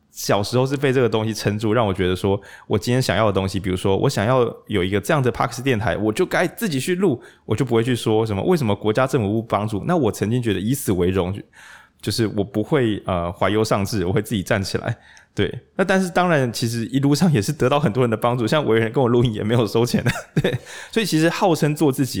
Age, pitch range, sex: 20-39, 100-135 Hz, male